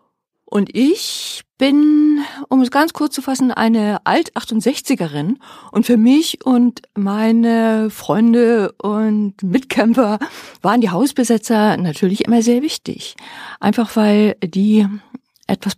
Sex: female